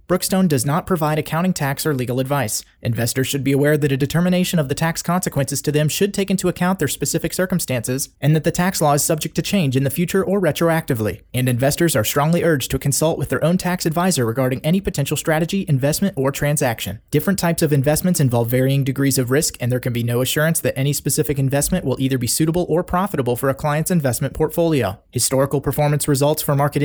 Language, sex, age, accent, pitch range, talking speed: English, male, 30-49, American, 135-170 Hz, 215 wpm